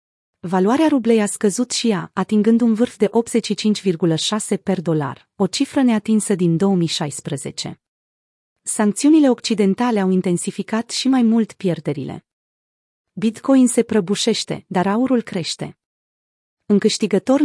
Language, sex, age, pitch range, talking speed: Romanian, female, 30-49, 175-225 Hz, 115 wpm